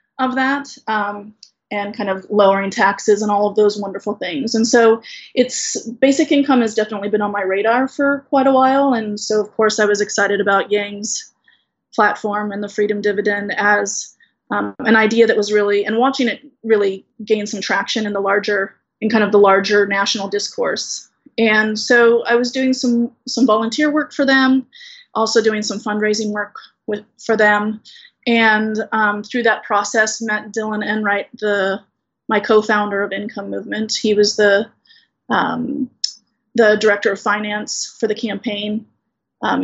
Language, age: English, 20-39